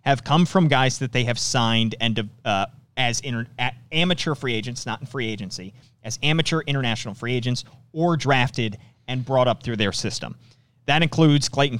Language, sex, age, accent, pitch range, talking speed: English, male, 30-49, American, 120-150 Hz, 180 wpm